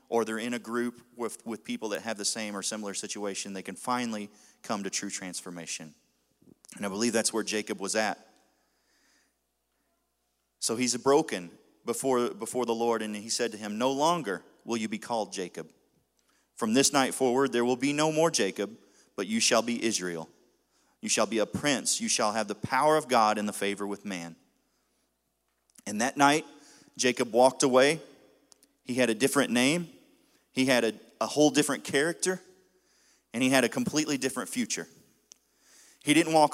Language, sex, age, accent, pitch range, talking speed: English, male, 30-49, American, 100-135 Hz, 180 wpm